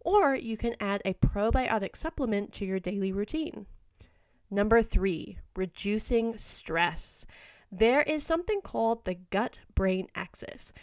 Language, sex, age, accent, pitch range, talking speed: English, female, 20-39, American, 190-265 Hz, 120 wpm